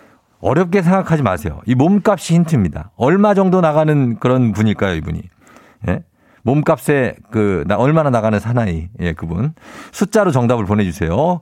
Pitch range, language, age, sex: 105-160 Hz, Korean, 50-69, male